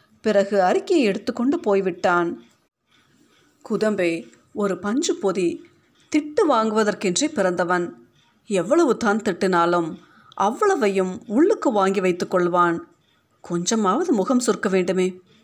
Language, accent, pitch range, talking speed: Tamil, native, 180-265 Hz, 95 wpm